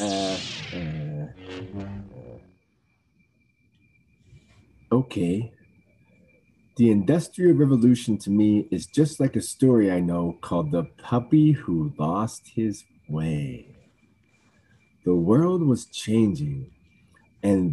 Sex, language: male, English